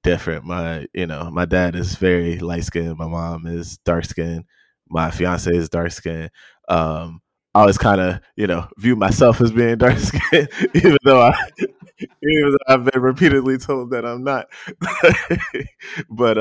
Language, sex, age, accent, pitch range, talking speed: English, male, 20-39, American, 85-105 Hz, 170 wpm